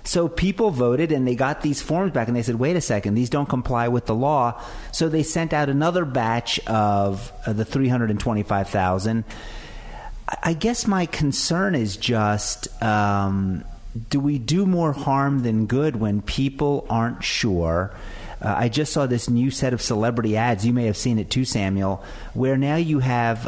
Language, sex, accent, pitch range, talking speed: English, male, American, 110-140 Hz, 190 wpm